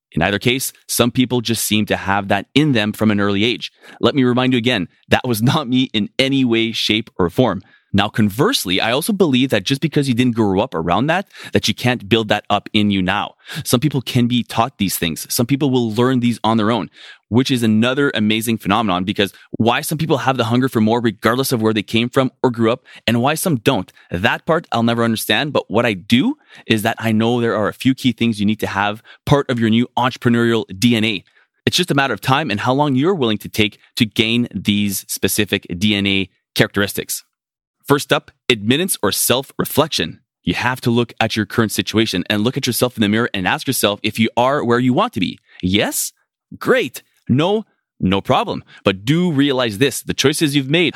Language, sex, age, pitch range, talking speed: English, male, 20-39, 105-125 Hz, 220 wpm